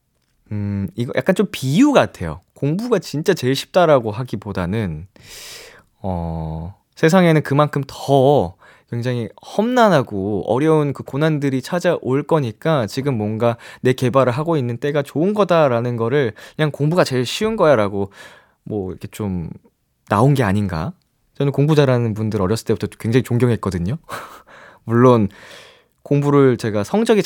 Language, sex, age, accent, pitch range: Korean, male, 20-39, native, 100-145 Hz